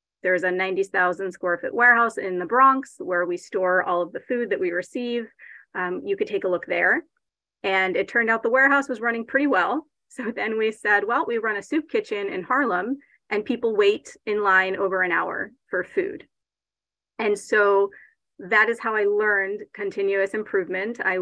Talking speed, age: 190 wpm, 30-49